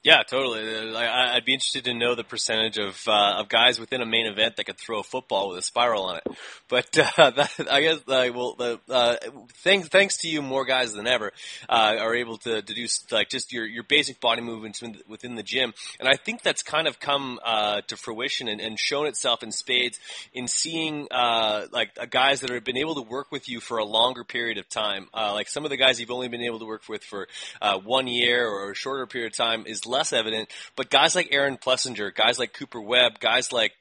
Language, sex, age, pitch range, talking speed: English, male, 20-39, 110-130 Hz, 240 wpm